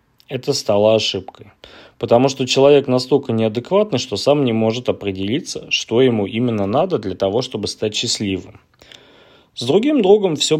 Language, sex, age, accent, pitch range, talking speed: Russian, male, 20-39, native, 100-140 Hz, 145 wpm